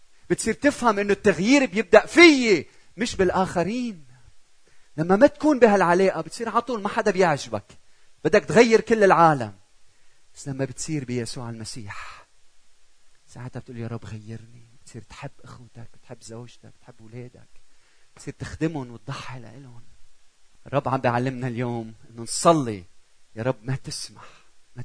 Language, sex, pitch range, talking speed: Arabic, male, 115-150 Hz, 130 wpm